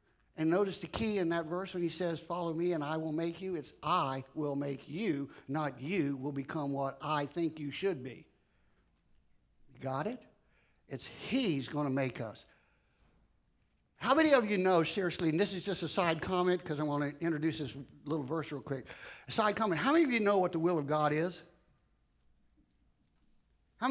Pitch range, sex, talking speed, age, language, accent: 150-200 Hz, male, 195 wpm, 60-79, English, American